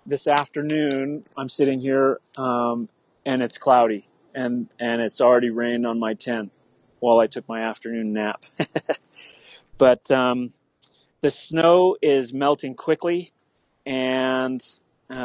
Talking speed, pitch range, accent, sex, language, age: 120 wpm, 120-140 Hz, American, male, English, 30-49